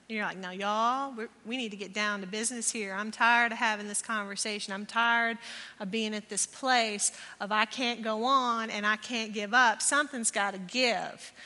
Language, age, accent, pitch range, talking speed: English, 40-59, American, 215-265 Hz, 210 wpm